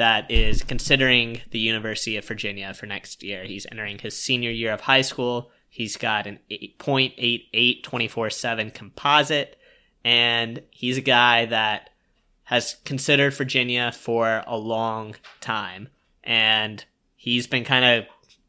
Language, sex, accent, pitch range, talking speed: English, male, American, 115-135 Hz, 130 wpm